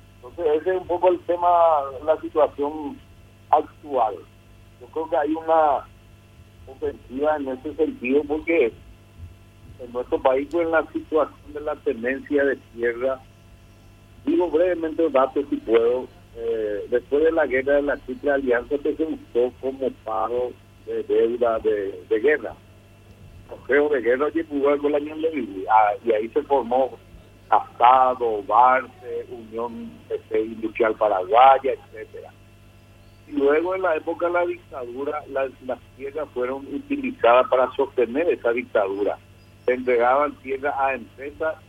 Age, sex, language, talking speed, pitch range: 60-79, male, Spanish, 135 wpm, 115-165 Hz